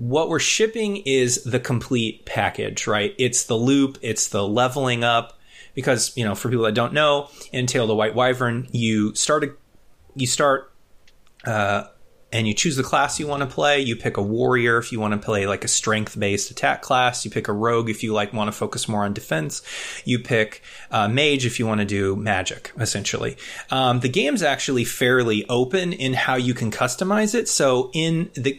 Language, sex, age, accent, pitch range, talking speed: English, male, 30-49, American, 110-140 Hz, 200 wpm